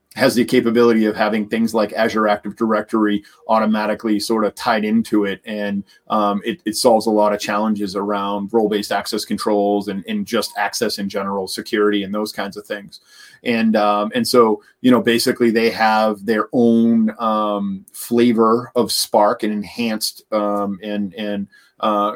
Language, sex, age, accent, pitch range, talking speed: English, male, 30-49, American, 105-120 Hz, 170 wpm